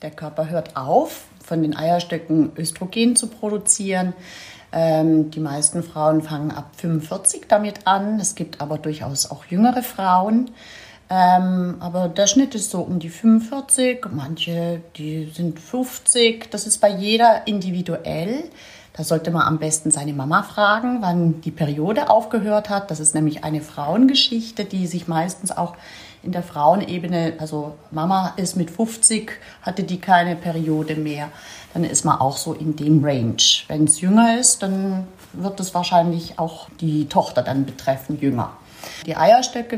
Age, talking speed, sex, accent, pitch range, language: 40-59, 155 wpm, female, German, 155-205 Hz, German